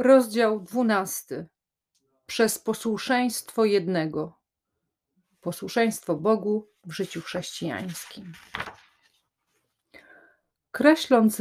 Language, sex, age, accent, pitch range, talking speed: Polish, female, 40-59, native, 180-225 Hz, 60 wpm